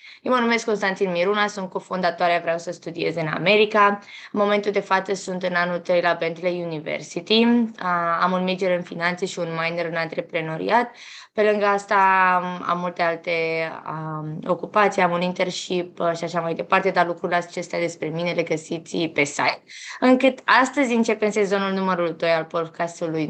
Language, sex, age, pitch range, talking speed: Romanian, female, 20-39, 170-205 Hz, 165 wpm